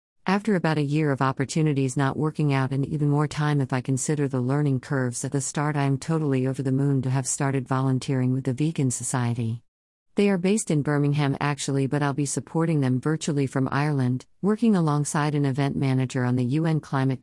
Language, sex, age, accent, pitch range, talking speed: English, female, 50-69, American, 130-145 Hz, 205 wpm